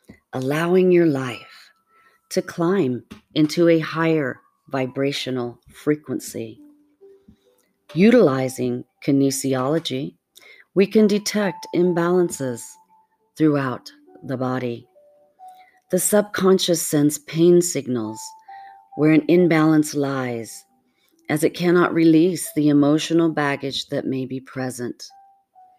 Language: English